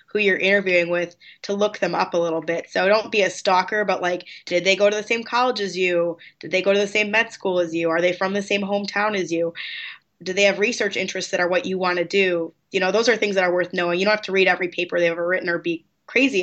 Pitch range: 175-200 Hz